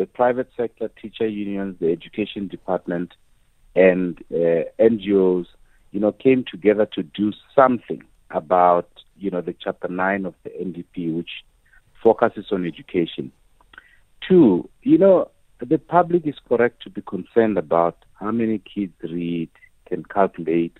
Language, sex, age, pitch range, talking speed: English, male, 50-69, 90-120 Hz, 140 wpm